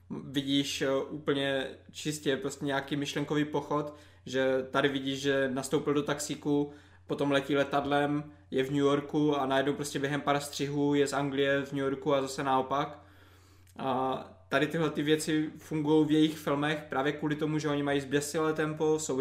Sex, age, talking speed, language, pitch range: male, 20-39, 170 wpm, Czech, 130-145 Hz